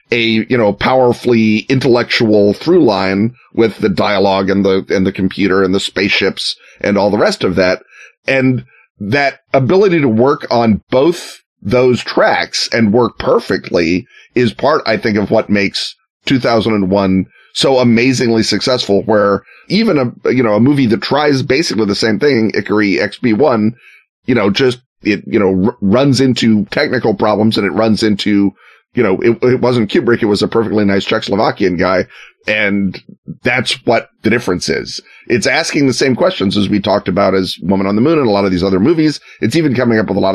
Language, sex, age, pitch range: English, male, 30-49, 100-120 Hz